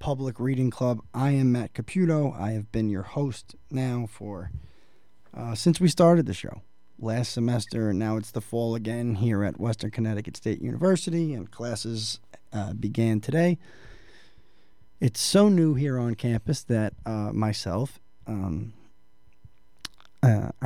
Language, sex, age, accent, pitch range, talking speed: English, male, 20-39, American, 105-130 Hz, 140 wpm